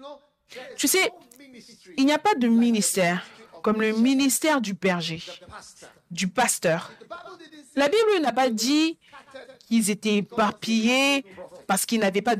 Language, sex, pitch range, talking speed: French, female, 200-270 Hz, 130 wpm